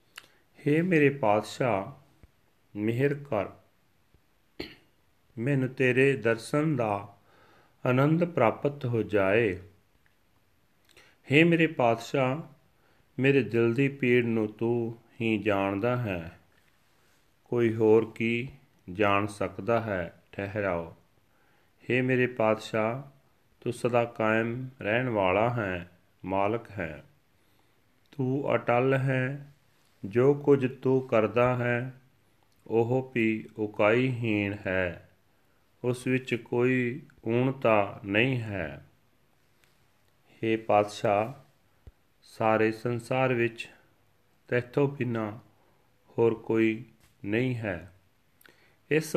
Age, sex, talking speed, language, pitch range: 40-59, male, 90 wpm, Punjabi, 105-130 Hz